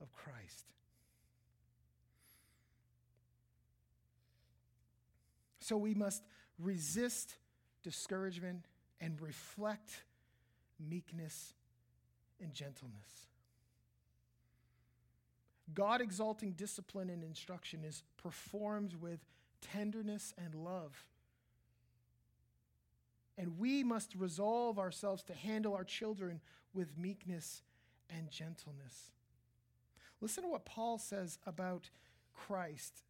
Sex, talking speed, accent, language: male, 80 wpm, American, English